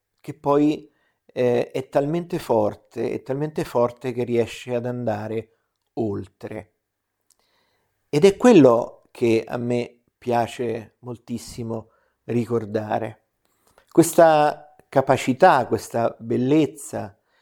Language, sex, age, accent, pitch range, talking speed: Italian, male, 50-69, native, 115-150 Hz, 95 wpm